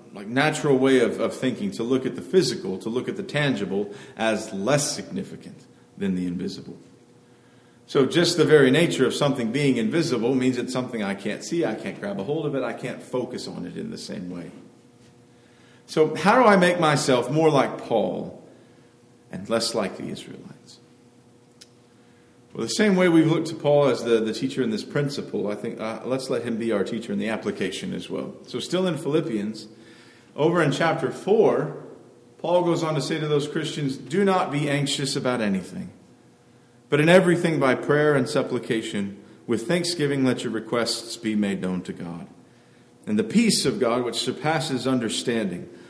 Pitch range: 120-155 Hz